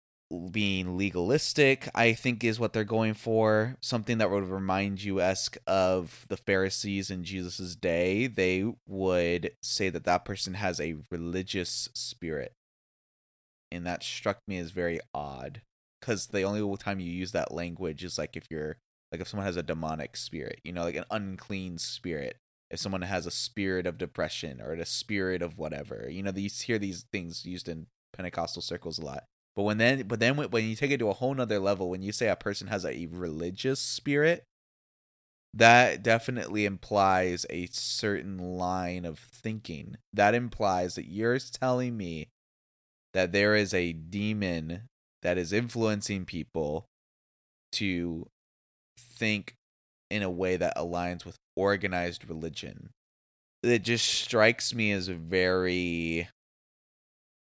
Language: English